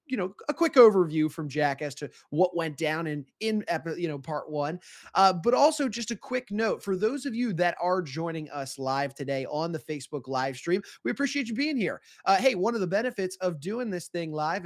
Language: English